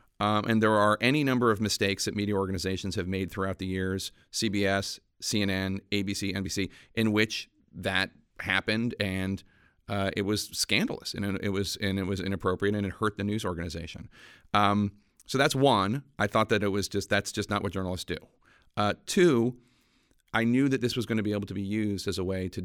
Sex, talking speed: male, 200 wpm